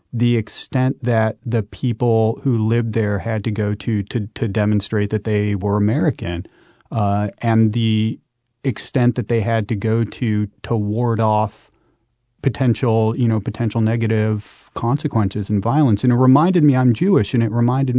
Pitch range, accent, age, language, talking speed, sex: 105-125 Hz, American, 30-49, English, 165 wpm, male